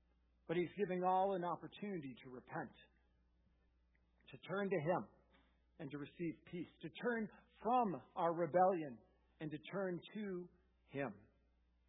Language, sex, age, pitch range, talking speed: English, male, 50-69, 165-225 Hz, 130 wpm